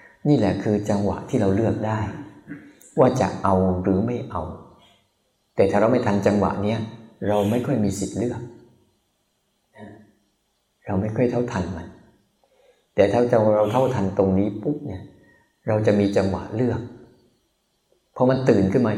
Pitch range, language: 100-120 Hz, Thai